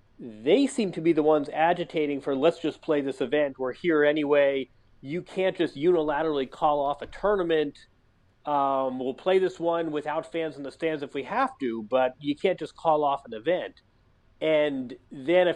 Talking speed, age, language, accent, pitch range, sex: 190 wpm, 30-49, English, American, 130-165 Hz, male